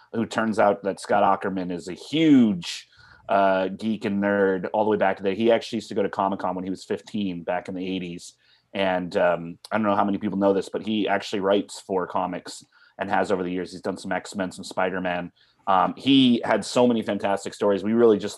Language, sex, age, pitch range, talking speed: English, male, 30-49, 95-110 Hz, 230 wpm